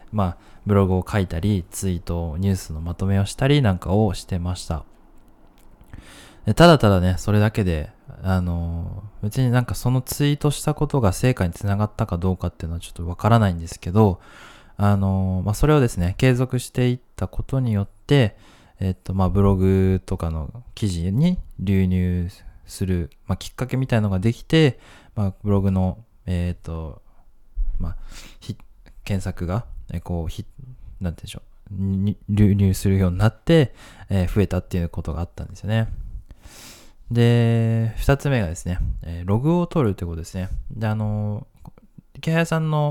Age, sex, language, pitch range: 20-39, male, Japanese, 90-115 Hz